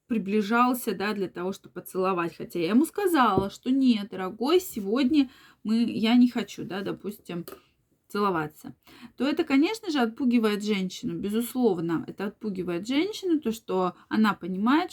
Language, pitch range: Russian, 190-250 Hz